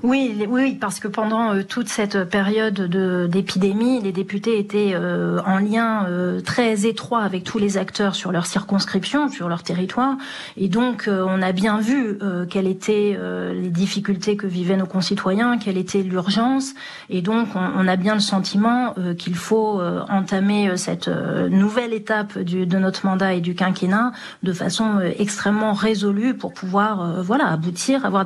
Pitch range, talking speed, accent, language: 185-220 Hz, 150 wpm, French, French